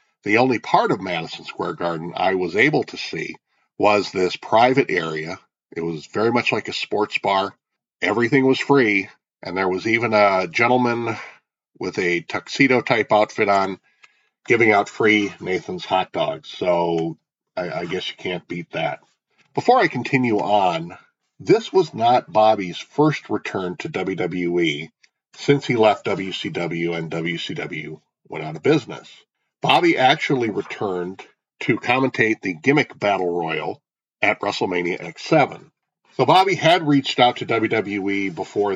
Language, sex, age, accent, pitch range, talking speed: English, male, 50-69, American, 95-130 Hz, 145 wpm